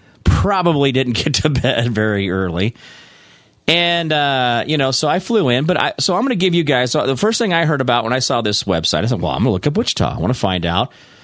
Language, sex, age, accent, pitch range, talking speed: English, male, 40-59, American, 115-190 Hz, 255 wpm